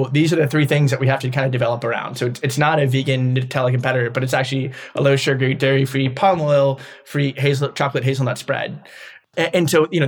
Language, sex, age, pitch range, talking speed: English, male, 20-39, 130-140 Hz, 220 wpm